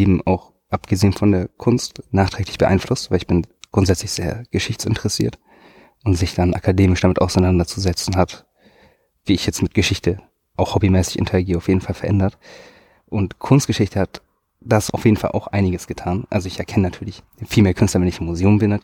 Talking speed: 175 wpm